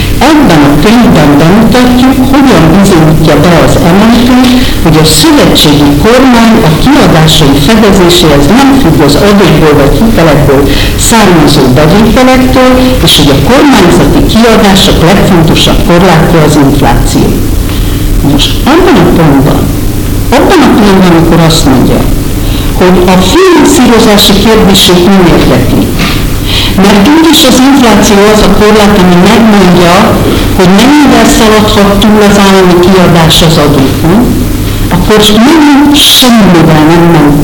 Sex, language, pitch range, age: female, Hungarian, 150-225 Hz, 50-69